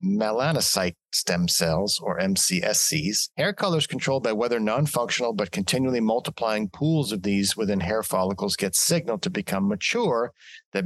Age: 40-59